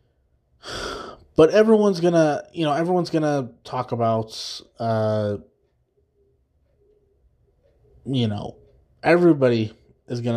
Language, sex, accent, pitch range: English, male, American, 115-155 Hz